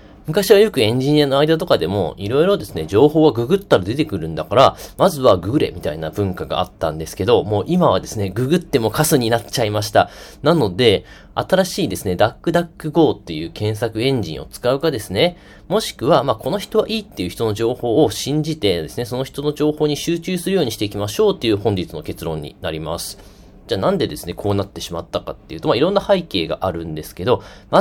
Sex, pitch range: male, 100-165 Hz